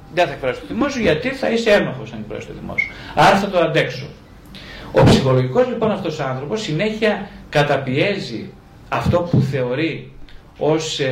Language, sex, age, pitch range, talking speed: Greek, male, 40-59, 135-200 Hz, 150 wpm